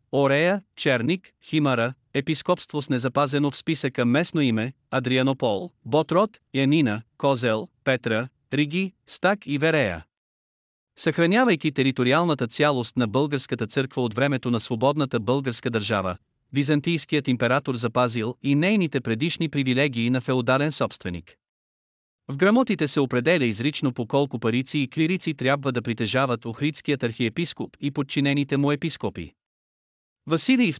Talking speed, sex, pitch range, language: 120 wpm, male, 120-150 Hz, Bulgarian